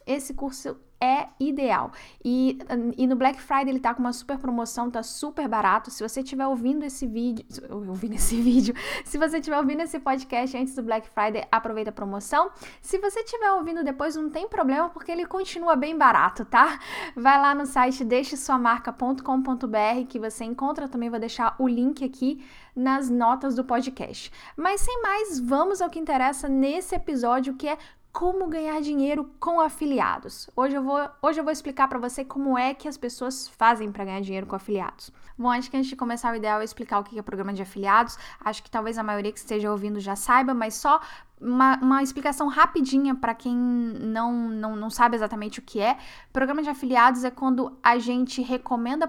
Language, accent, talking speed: Portuguese, Brazilian, 195 wpm